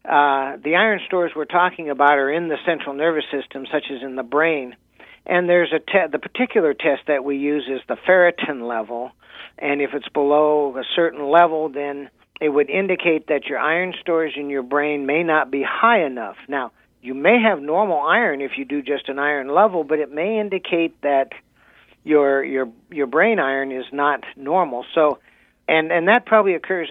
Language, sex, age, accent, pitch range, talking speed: English, male, 60-79, American, 135-165 Hz, 195 wpm